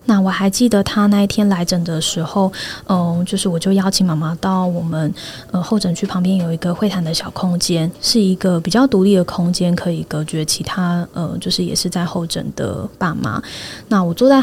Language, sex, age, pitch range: Chinese, female, 20-39, 170-200 Hz